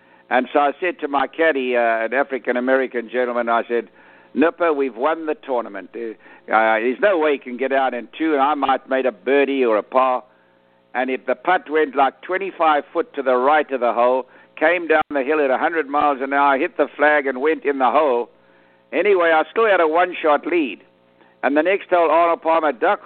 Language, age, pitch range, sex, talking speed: English, 60-79, 130-170 Hz, male, 215 wpm